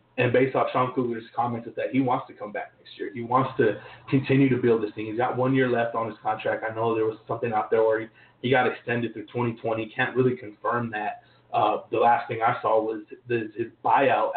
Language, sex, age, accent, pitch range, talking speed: English, male, 30-49, American, 115-145 Hz, 245 wpm